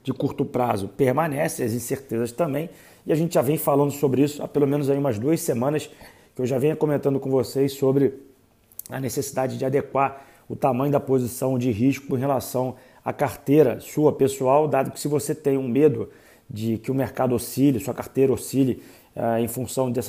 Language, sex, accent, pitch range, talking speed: Portuguese, male, Brazilian, 125-145 Hz, 185 wpm